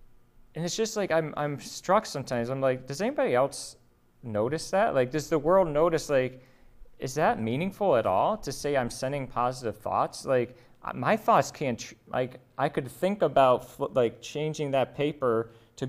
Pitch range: 120-150 Hz